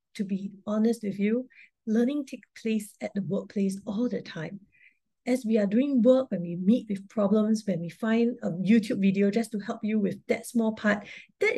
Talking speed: 200 wpm